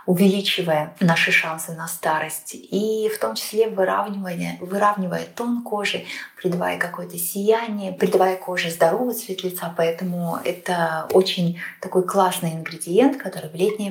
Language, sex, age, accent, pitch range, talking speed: Russian, female, 20-39, native, 160-190 Hz, 130 wpm